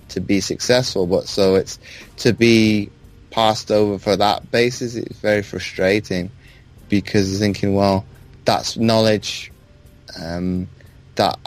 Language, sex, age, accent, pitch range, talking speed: English, male, 20-39, British, 90-105 Hz, 120 wpm